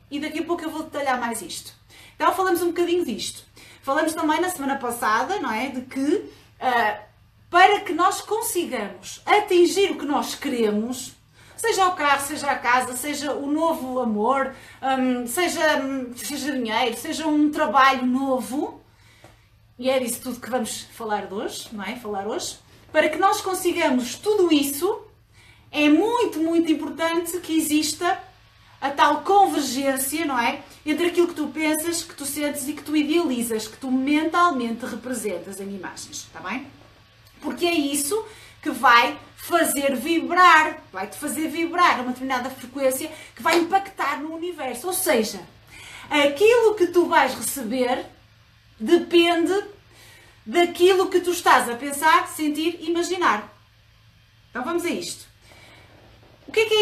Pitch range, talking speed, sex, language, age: 245-340 Hz, 150 wpm, female, Portuguese, 30-49